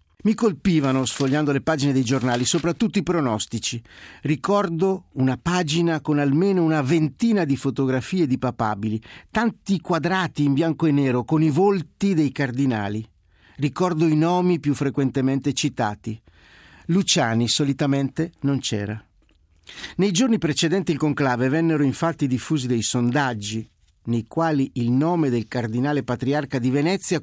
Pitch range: 125-160 Hz